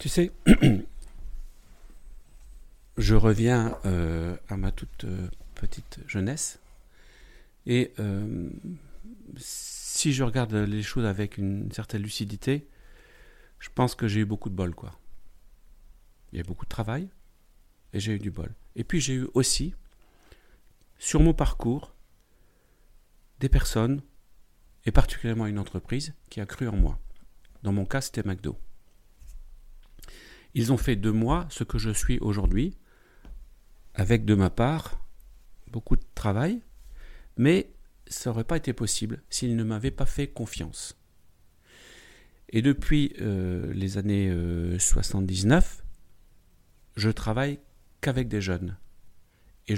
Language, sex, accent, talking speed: French, male, French, 130 wpm